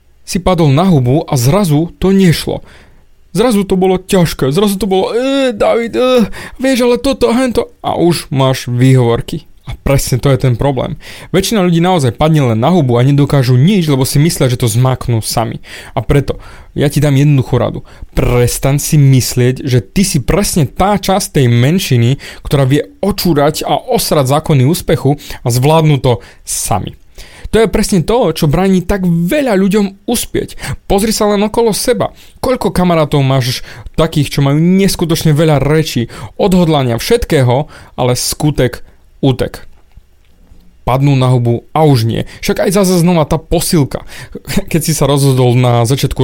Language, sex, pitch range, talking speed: Slovak, male, 130-185 Hz, 160 wpm